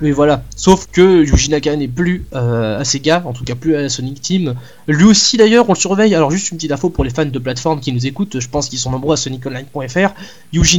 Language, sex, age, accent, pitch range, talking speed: French, male, 20-39, French, 140-180 Hz, 255 wpm